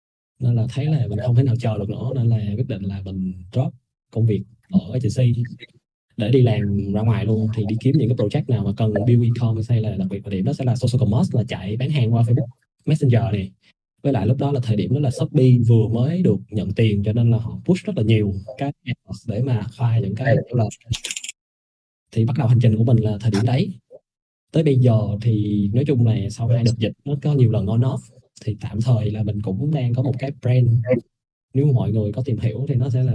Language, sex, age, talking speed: Vietnamese, male, 20-39, 245 wpm